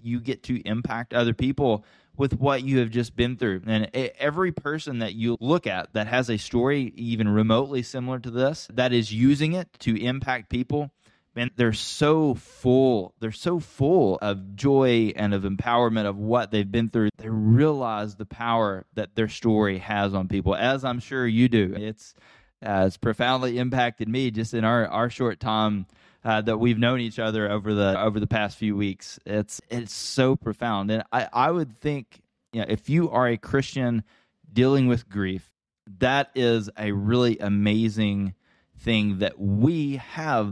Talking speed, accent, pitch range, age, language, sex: 180 wpm, American, 105-130 Hz, 20-39, English, male